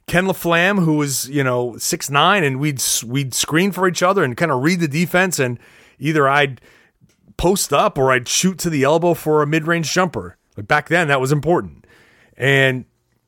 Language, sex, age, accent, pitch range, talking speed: English, male, 30-49, American, 125-170 Hz, 190 wpm